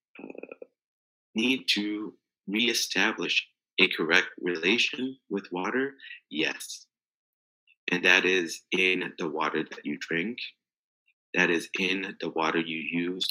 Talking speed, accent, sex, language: 115 wpm, American, male, English